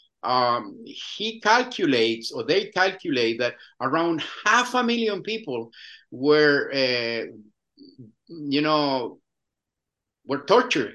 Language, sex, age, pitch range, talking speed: English, male, 50-69, 135-225 Hz, 100 wpm